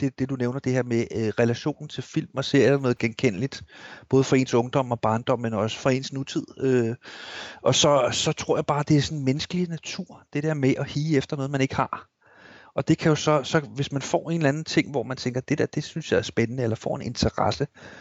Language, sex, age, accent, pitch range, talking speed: Danish, male, 30-49, native, 120-145 Hz, 240 wpm